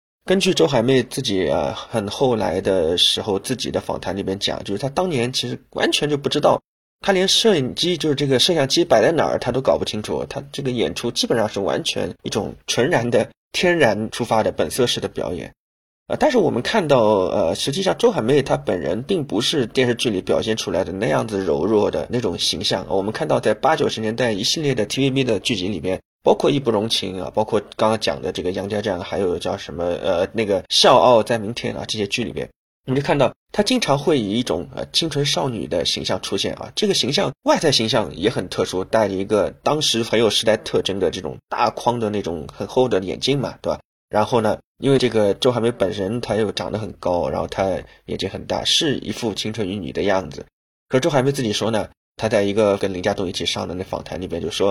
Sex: male